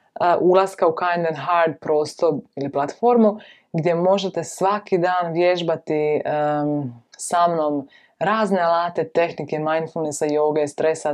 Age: 20-39